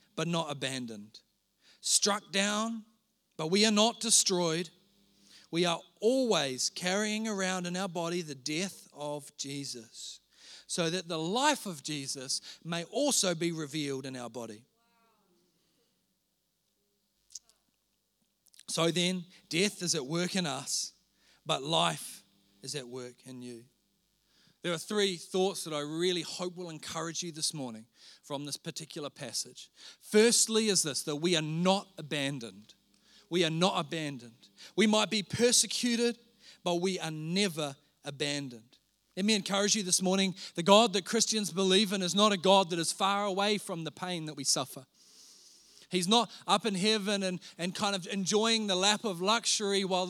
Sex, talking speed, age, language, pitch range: male, 155 wpm, 40-59, English, 155-200 Hz